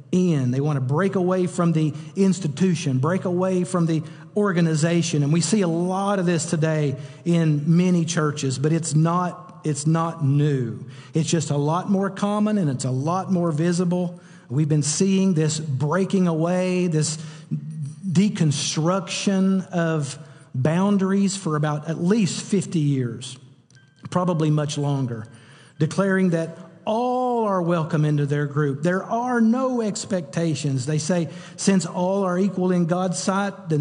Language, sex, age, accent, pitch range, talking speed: English, male, 50-69, American, 150-185 Hz, 145 wpm